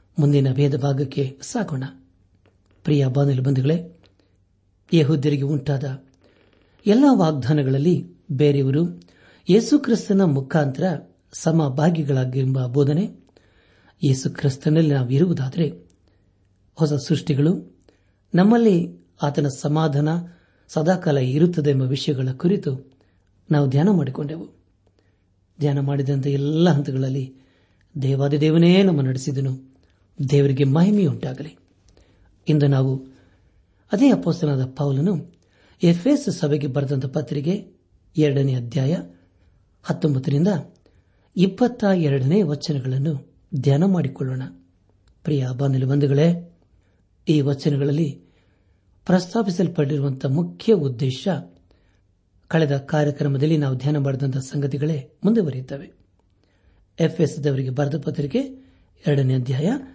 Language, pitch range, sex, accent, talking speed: Kannada, 125-160 Hz, male, native, 80 wpm